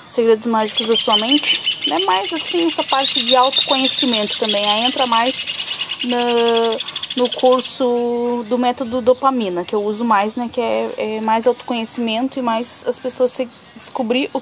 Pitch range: 210-250 Hz